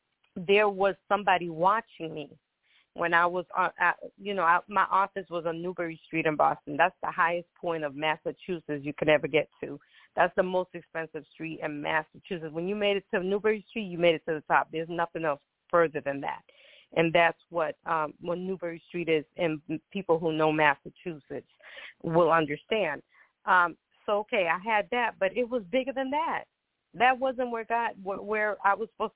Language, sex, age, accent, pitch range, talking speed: English, female, 40-59, American, 160-205 Hz, 190 wpm